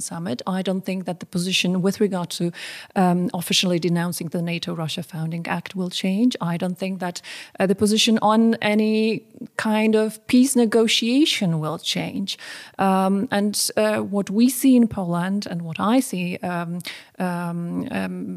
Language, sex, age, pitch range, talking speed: English, female, 30-49, 175-215 Hz, 160 wpm